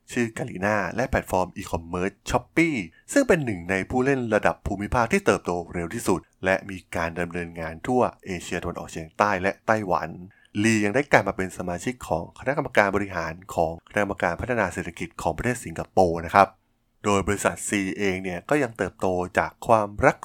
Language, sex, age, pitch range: Thai, male, 20-39, 85-110 Hz